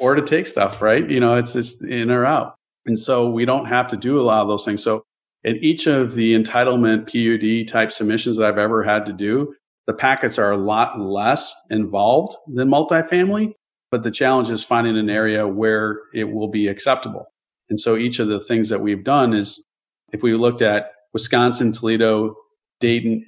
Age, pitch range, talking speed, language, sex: 40-59, 110-125 Hz, 200 wpm, English, male